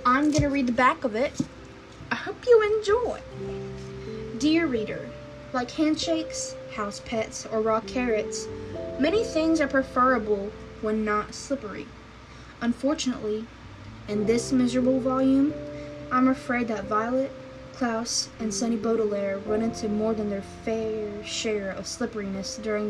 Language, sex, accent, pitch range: English, female, American, 200-260 Hz